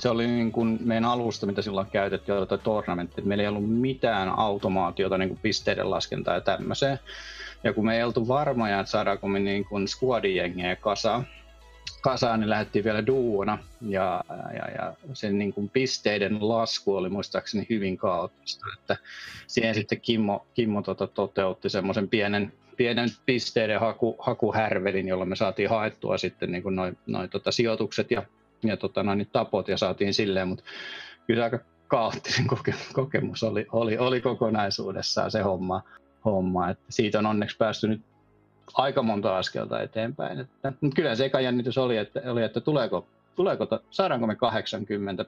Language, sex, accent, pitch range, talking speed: Finnish, male, native, 100-120 Hz, 155 wpm